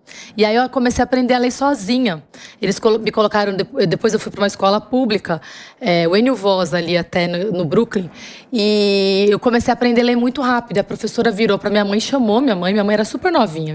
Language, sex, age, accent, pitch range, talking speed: English, female, 20-39, Brazilian, 205-255 Hz, 230 wpm